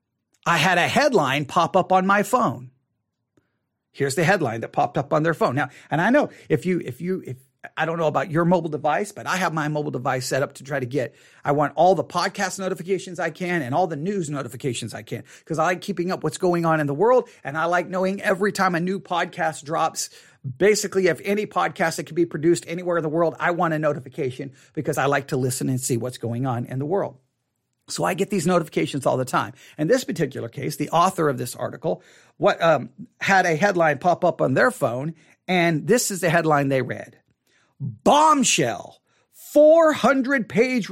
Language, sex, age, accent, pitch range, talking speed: English, male, 40-59, American, 145-200 Hz, 215 wpm